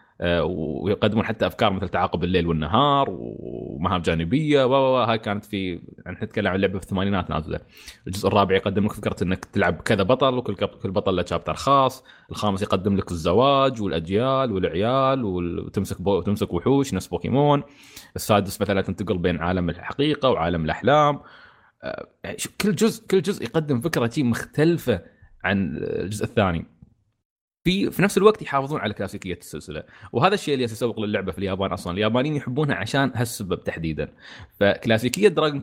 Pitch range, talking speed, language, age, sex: 95-135 Hz, 150 wpm, Arabic, 20-39, male